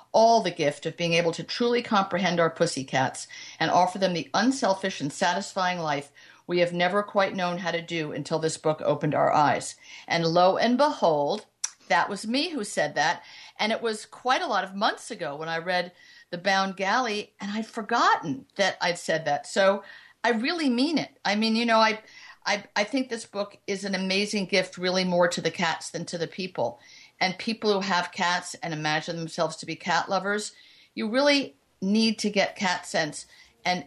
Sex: female